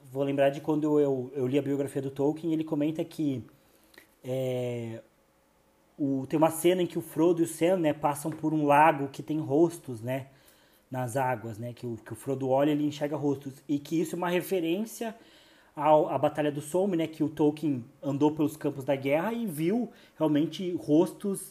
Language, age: Portuguese, 20-39